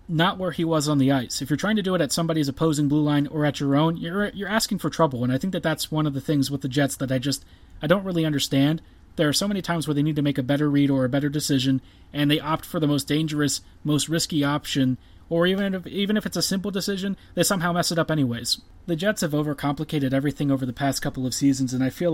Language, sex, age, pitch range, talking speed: English, male, 30-49, 135-160 Hz, 275 wpm